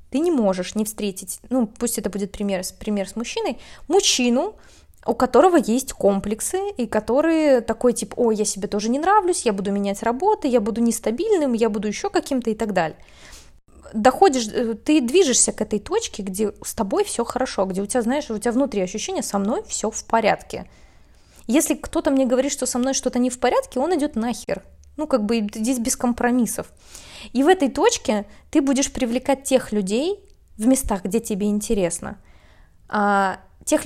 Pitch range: 215-295 Hz